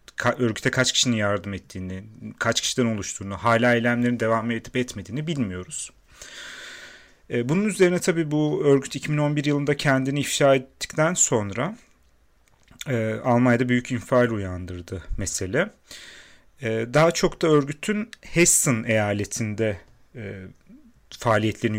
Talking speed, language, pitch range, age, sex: 100 wpm, Turkish, 100-140 Hz, 40-59, male